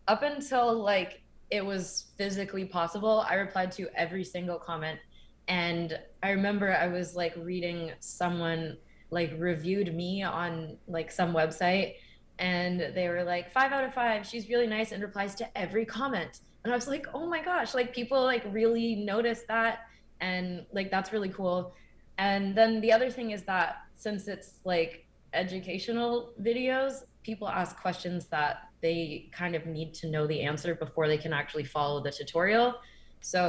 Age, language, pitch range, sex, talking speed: 20-39, English, 170-220 Hz, female, 170 wpm